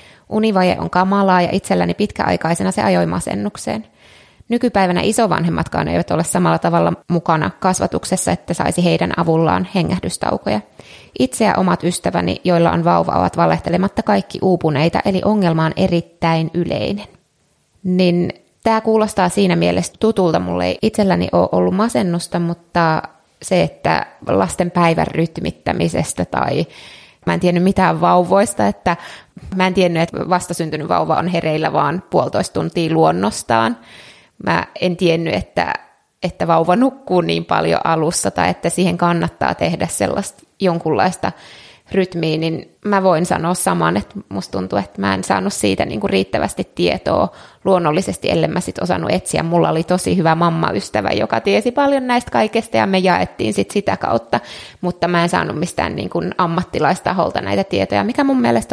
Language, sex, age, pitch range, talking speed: Finnish, female, 20-39, 150-190 Hz, 145 wpm